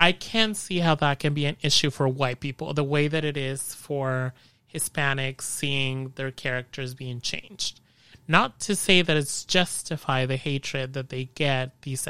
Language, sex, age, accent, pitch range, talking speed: English, male, 30-49, American, 130-155 Hz, 180 wpm